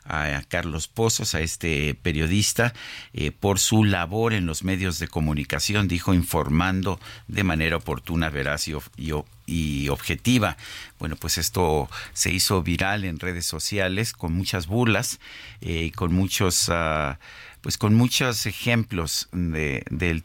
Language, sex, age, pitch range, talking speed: Spanish, male, 50-69, 80-100 Hz, 150 wpm